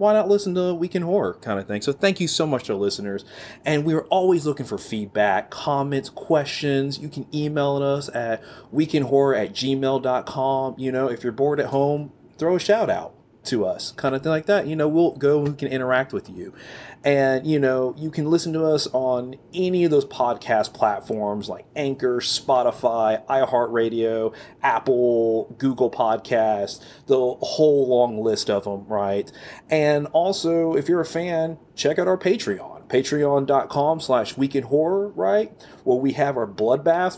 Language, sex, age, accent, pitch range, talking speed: English, male, 30-49, American, 125-160 Hz, 175 wpm